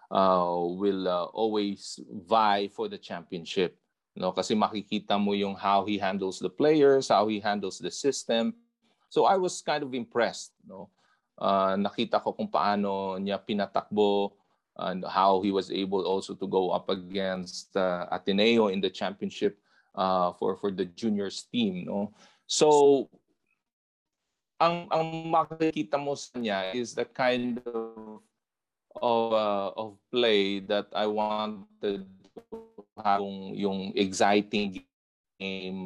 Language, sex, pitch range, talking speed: Filipino, male, 95-115 Hz, 130 wpm